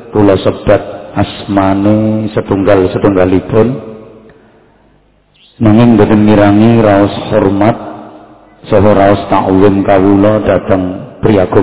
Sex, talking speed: male, 70 wpm